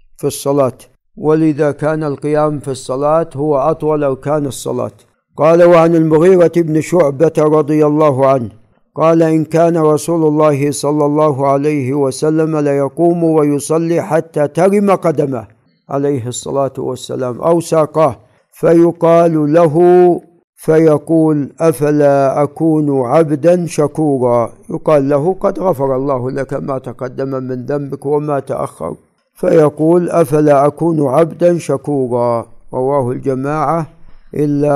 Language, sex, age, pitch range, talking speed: Arabic, male, 60-79, 140-165 Hz, 115 wpm